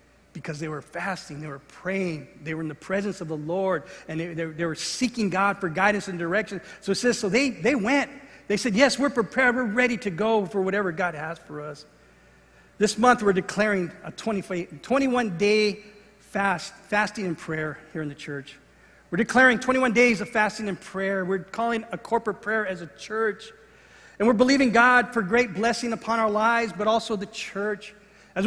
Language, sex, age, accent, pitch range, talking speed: English, male, 40-59, American, 185-240 Hz, 200 wpm